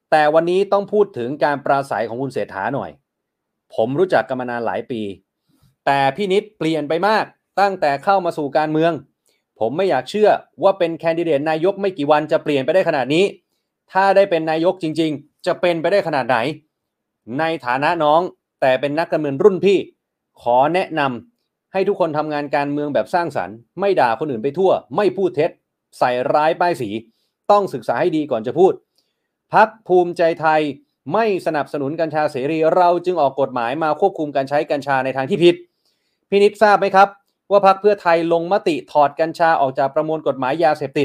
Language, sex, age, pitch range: Thai, male, 30-49, 145-195 Hz